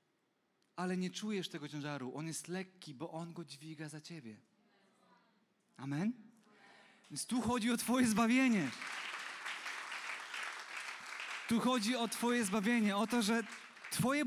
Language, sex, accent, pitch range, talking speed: Polish, male, native, 175-240 Hz, 125 wpm